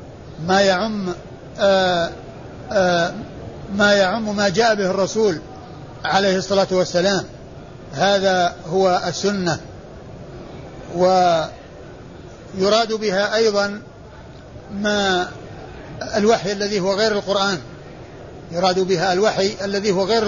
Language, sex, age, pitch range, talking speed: Arabic, male, 60-79, 180-205 Hz, 85 wpm